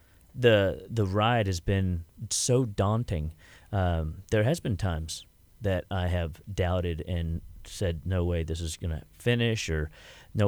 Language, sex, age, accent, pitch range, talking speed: English, male, 30-49, American, 85-110 Hz, 155 wpm